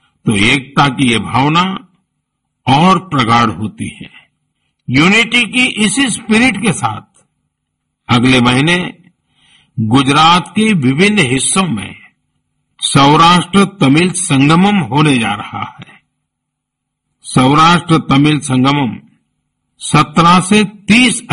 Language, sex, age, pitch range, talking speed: Gujarati, male, 50-69, 135-195 Hz, 100 wpm